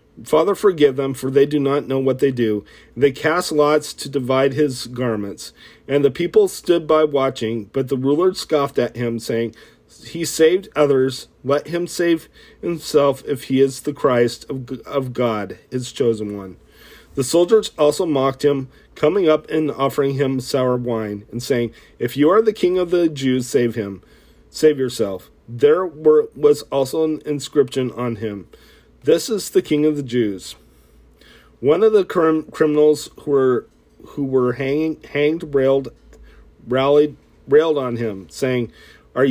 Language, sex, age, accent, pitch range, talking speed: English, male, 40-59, American, 125-155 Hz, 165 wpm